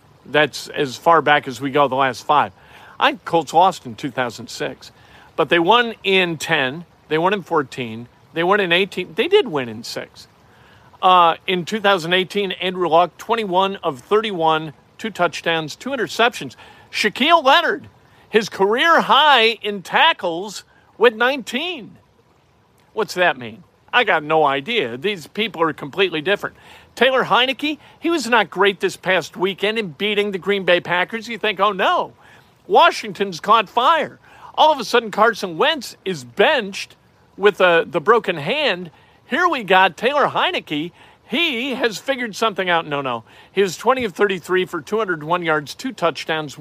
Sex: male